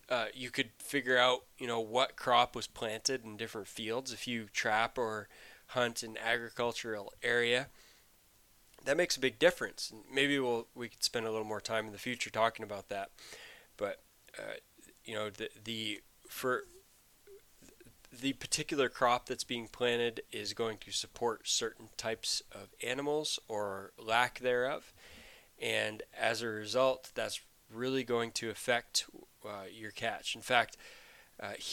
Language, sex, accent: English, male, American